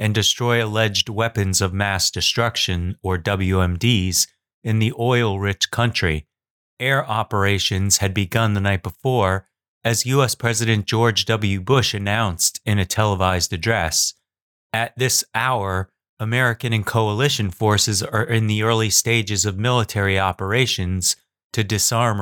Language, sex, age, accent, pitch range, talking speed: English, male, 30-49, American, 95-115 Hz, 130 wpm